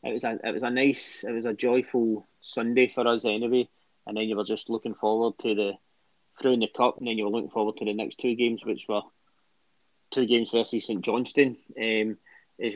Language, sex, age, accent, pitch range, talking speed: English, male, 20-39, British, 110-125 Hz, 225 wpm